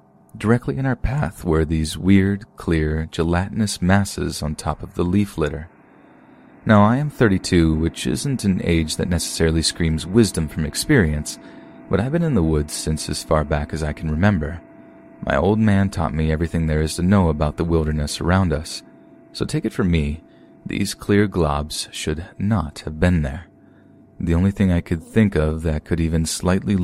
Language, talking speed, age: English, 185 wpm, 30-49